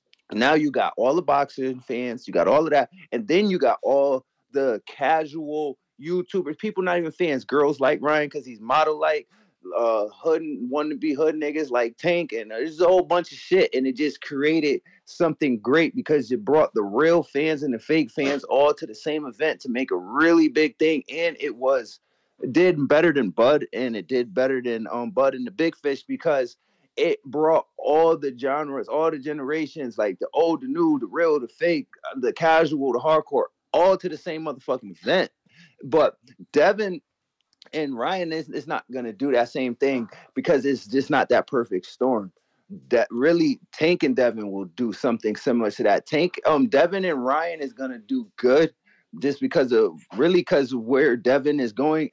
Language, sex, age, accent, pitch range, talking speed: English, male, 30-49, American, 135-175 Hz, 190 wpm